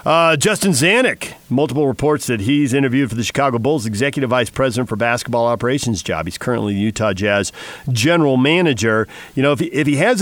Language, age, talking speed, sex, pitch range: English, 50-69, 190 wpm, male, 110-140 Hz